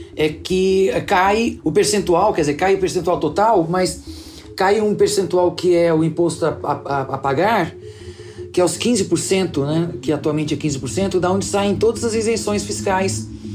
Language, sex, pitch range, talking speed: Portuguese, male, 155-190 Hz, 175 wpm